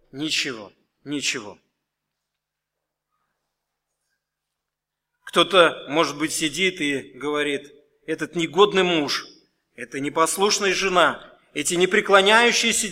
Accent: native